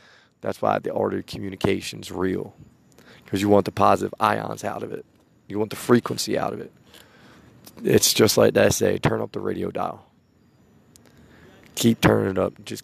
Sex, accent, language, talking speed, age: male, American, English, 180 wpm, 30-49